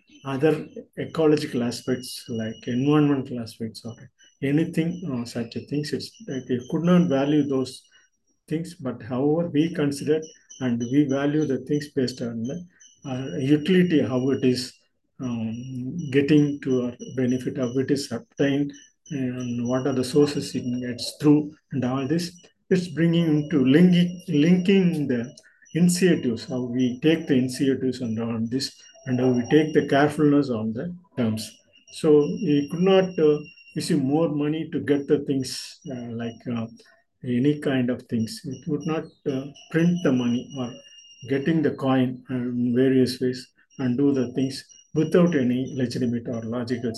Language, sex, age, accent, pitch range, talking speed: Tamil, male, 50-69, native, 125-150 Hz, 155 wpm